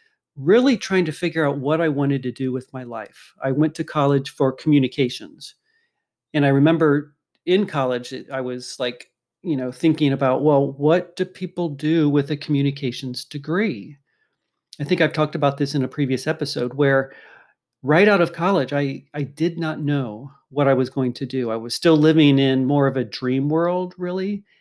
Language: English